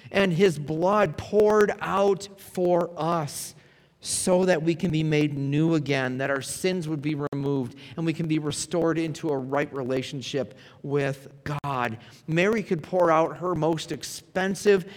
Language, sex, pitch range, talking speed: English, male, 105-150 Hz, 155 wpm